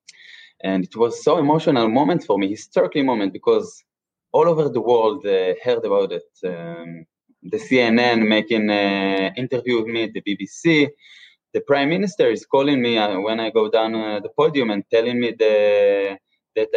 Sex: male